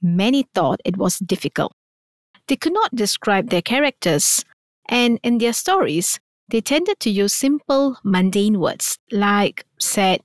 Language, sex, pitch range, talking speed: English, female, 185-270 Hz, 140 wpm